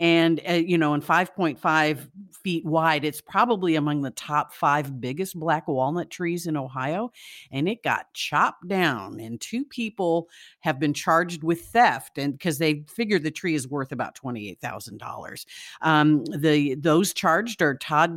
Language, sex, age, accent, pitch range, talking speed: English, female, 50-69, American, 145-175 Hz, 160 wpm